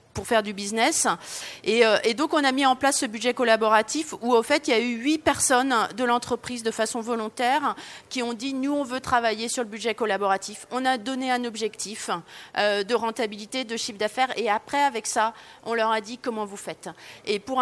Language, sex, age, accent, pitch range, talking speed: French, female, 30-49, French, 210-260 Hz, 220 wpm